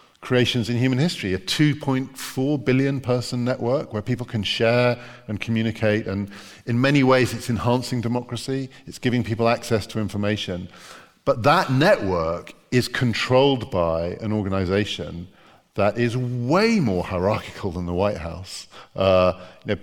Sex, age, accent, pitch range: male, 50-69, British, 95-125 Hz